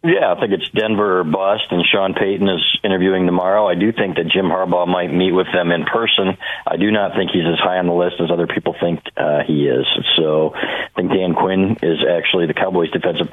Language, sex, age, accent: English, male, 40-59, American